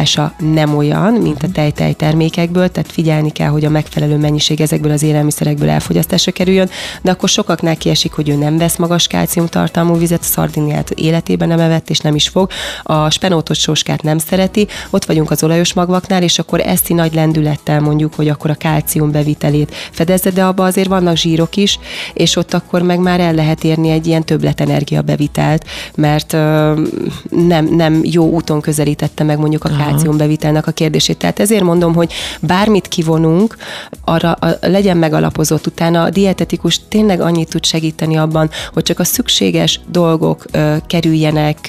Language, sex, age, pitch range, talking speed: Hungarian, female, 30-49, 155-175 Hz, 165 wpm